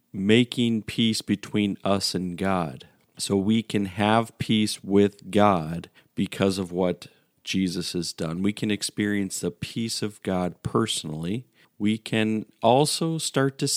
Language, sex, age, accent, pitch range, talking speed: English, male, 40-59, American, 95-110 Hz, 140 wpm